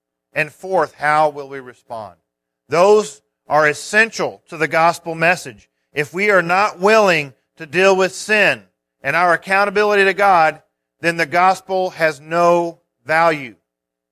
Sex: male